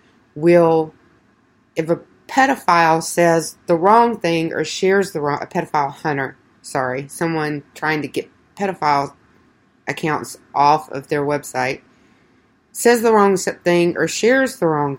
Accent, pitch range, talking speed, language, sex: American, 150-185 Hz, 135 wpm, English, female